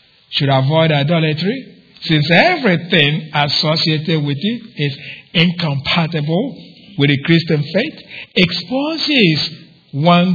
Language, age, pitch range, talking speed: English, 50-69, 145-190 Hz, 95 wpm